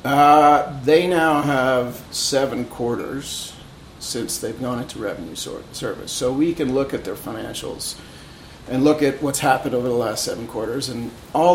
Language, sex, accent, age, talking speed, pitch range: English, male, American, 40-59, 160 wpm, 120-150 Hz